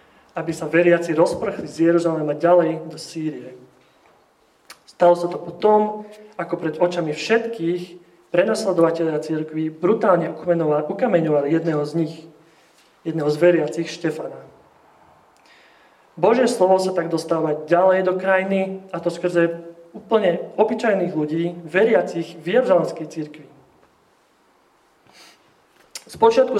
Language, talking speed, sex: Slovak, 110 wpm, male